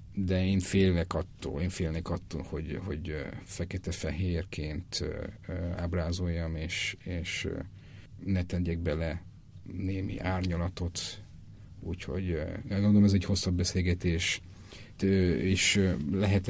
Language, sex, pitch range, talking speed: Hungarian, male, 90-100 Hz, 95 wpm